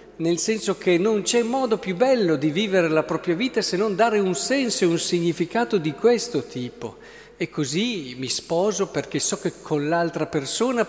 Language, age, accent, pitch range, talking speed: Italian, 50-69, native, 145-205 Hz, 185 wpm